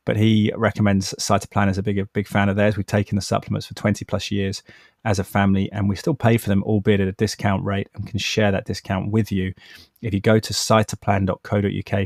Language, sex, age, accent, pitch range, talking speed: English, male, 20-39, British, 100-110 Hz, 230 wpm